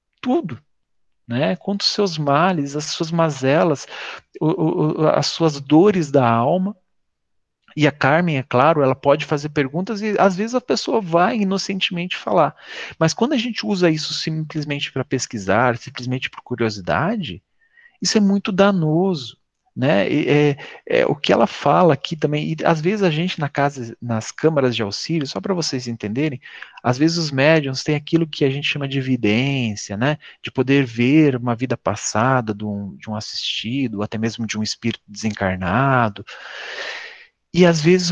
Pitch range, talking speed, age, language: 125-175 Hz, 165 wpm, 40-59, Portuguese